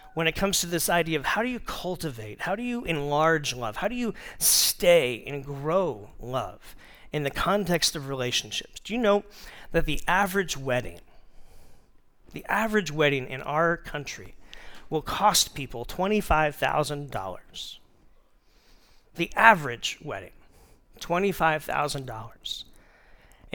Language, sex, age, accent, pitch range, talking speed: English, male, 40-59, American, 140-185 Hz, 125 wpm